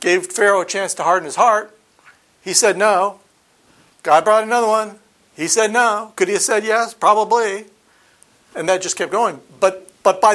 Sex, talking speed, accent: male, 185 wpm, American